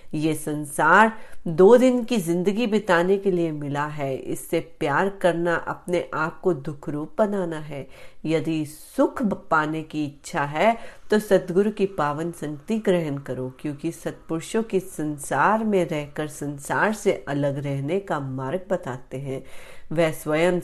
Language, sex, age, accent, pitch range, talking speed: Hindi, female, 40-59, native, 150-190 Hz, 145 wpm